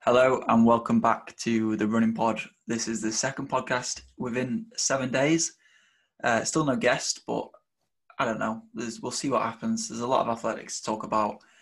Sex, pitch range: male, 110-120 Hz